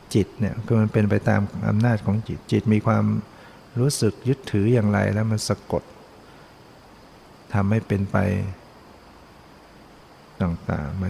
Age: 60-79